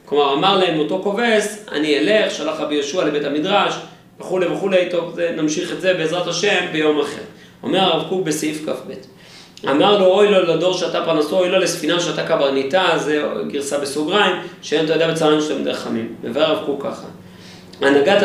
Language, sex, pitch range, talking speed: Hebrew, male, 150-185 Hz, 180 wpm